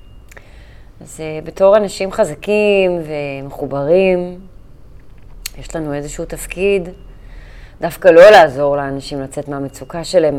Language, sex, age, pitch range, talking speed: Hebrew, female, 30-49, 135-170 Hz, 90 wpm